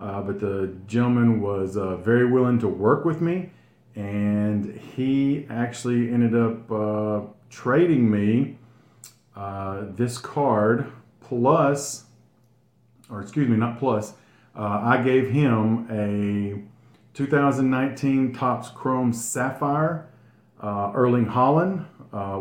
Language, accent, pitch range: English, American, 110-130 Hz